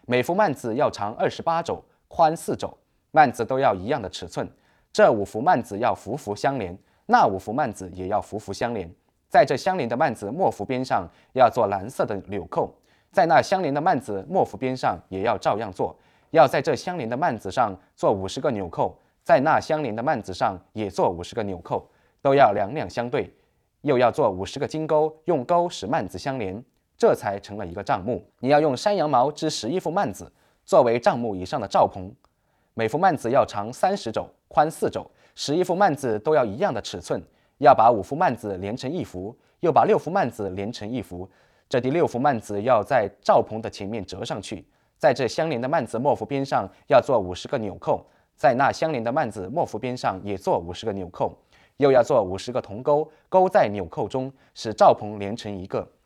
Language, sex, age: English, male, 20-39